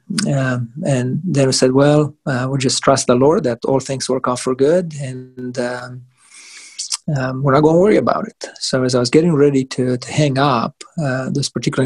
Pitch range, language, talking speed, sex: 130-155 Hz, English, 215 wpm, male